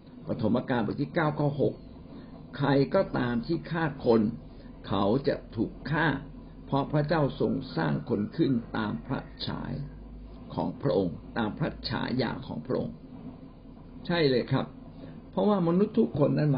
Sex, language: male, Thai